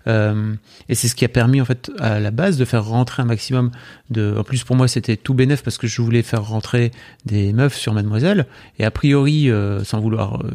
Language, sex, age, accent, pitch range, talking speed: French, male, 40-59, French, 110-130 Hz, 240 wpm